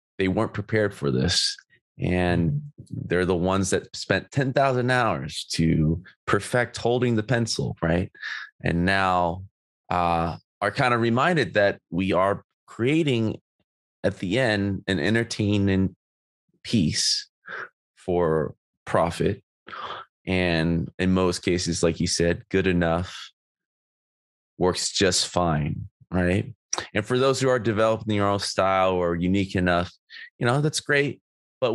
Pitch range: 90-120 Hz